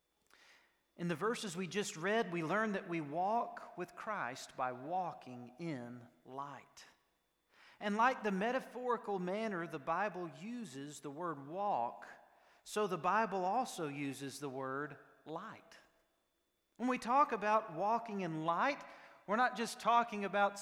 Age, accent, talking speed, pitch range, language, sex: 40-59, American, 140 wpm, 170-235 Hz, English, male